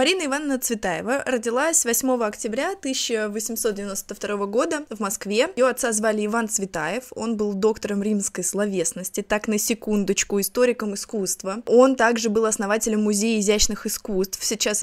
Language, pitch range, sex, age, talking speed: Russian, 205-245 Hz, female, 20-39, 135 wpm